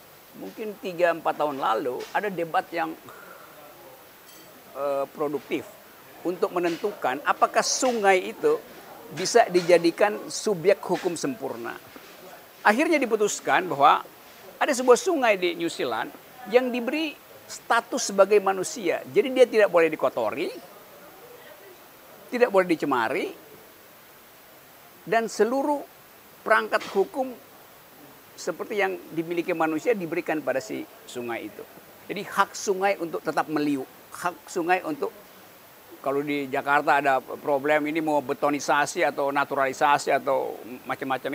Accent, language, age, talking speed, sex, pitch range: native, Indonesian, 50-69, 110 wpm, male, 160-250 Hz